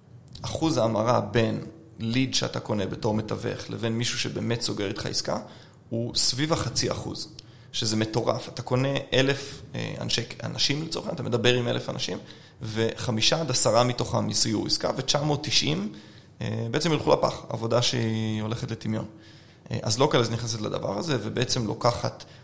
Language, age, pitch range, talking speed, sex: Hebrew, 30-49, 110-130 Hz, 145 wpm, male